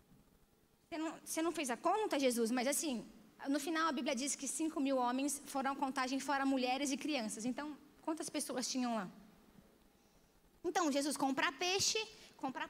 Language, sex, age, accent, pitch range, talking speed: Portuguese, female, 20-39, Brazilian, 235-295 Hz, 160 wpm